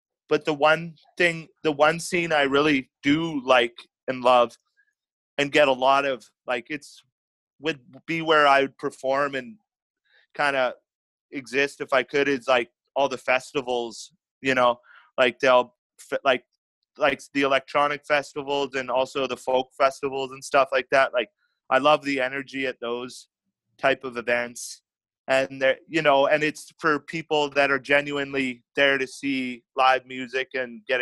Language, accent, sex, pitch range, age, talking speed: English, American, male, 130-150 Hz, 30-49, 165 wpm